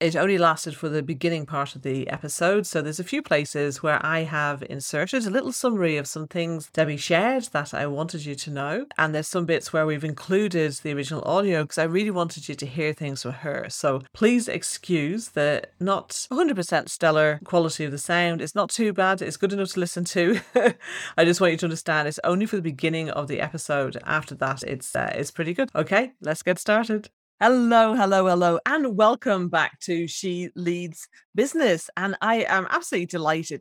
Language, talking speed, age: English, 205 wpm, 40-59